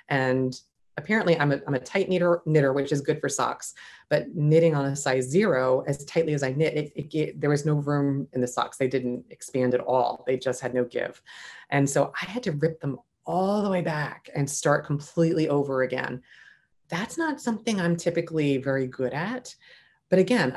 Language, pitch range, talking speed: English, 130-160 Hz, 195 wpm